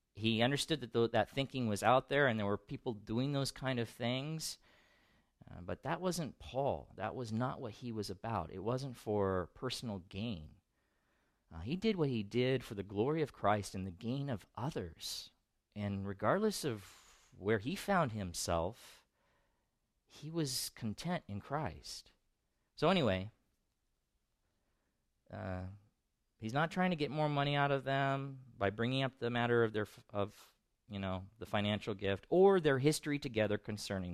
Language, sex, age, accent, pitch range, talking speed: English, male, 40-59, American, 100-135 Hz, 165 wpm